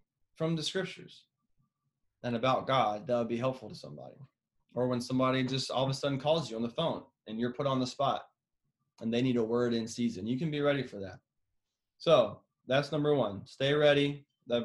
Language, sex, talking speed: English, male, 210 wpm